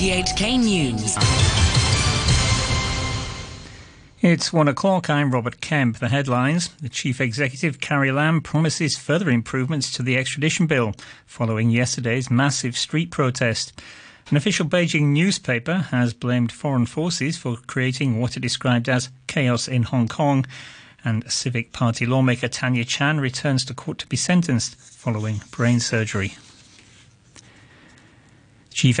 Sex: male